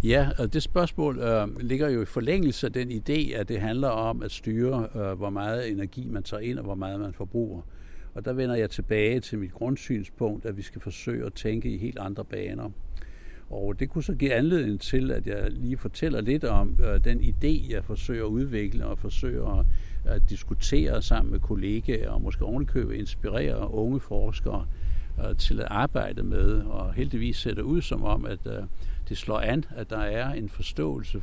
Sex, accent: male, native